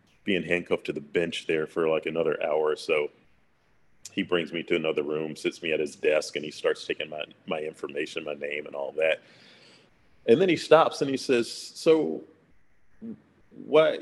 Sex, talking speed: male, 190 wpm